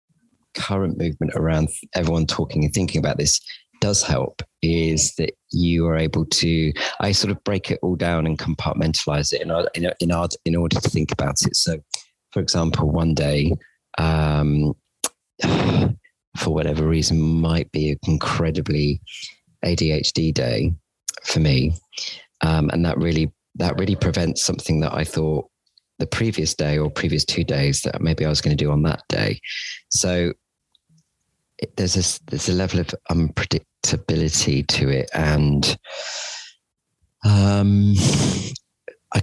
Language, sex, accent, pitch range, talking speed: English, male, British, 75-90 Hz, 145 wpm